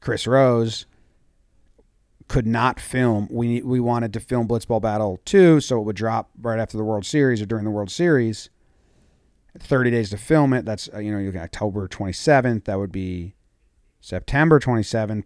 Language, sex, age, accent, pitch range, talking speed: English, male, 40-59, American, 95-120 Hz, 165 wpm